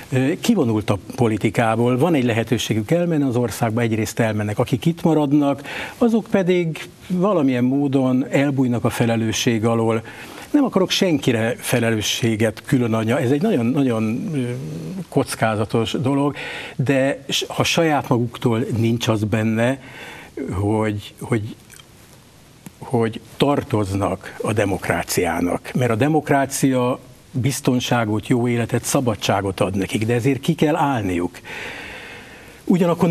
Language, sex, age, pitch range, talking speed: Hungarian, male, 60-79, 115-135 Hz, 110 wpm